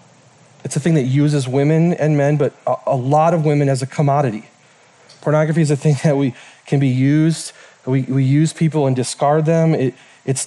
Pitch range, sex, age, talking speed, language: 130-155 Hz, male, 30-49, 195 wpm, English